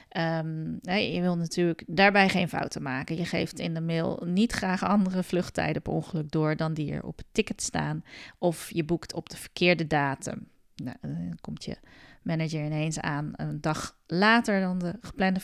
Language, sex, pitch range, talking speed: Dutch, female, 160-195 Hz, 185 wpm